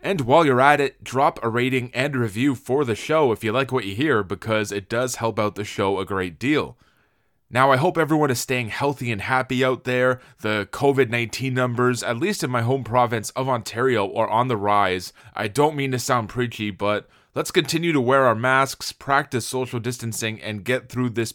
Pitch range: 110-135 Hz